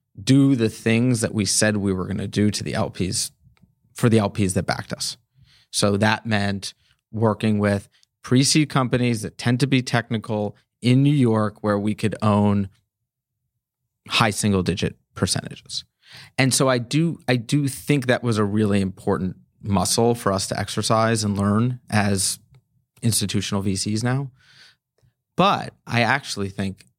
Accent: American